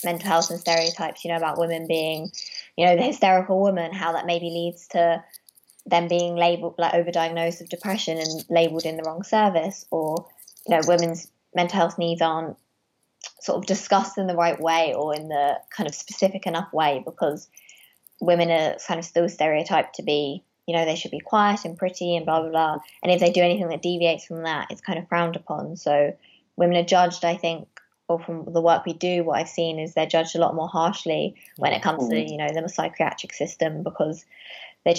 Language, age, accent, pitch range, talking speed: English, 20-39, British, 165-175 Hz, 210 wpm